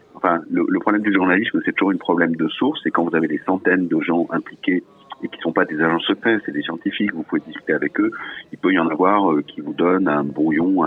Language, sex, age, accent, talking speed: French, male, 40-59, French, 265 wpm